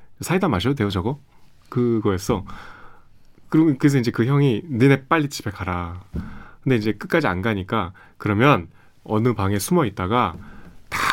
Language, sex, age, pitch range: Korean, male, 30-49, 100-145 Hz